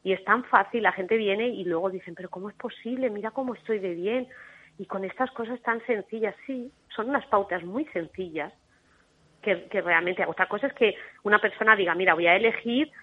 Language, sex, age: Spanish, female, 30-49